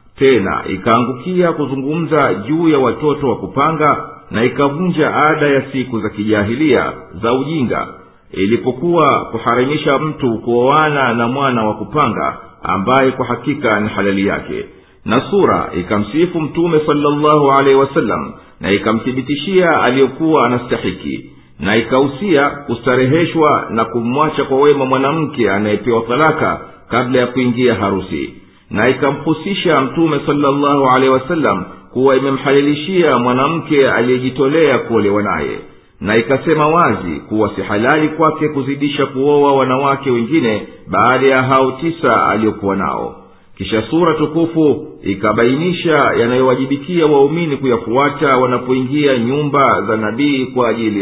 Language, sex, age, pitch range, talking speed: Swahili, male, 50-69, 115-150 Hz, 120 wpm